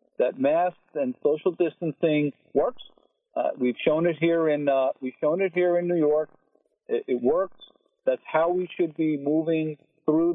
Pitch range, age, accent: 140-185 Hz, 50-69, American